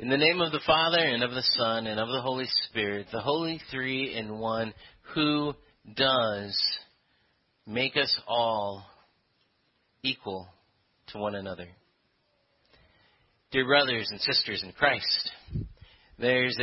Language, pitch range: English, 110-145 Hz